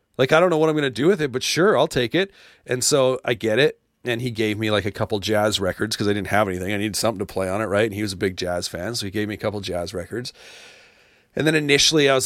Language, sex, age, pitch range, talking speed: English, male, 30-49, 105-130 Hz, 310 wpm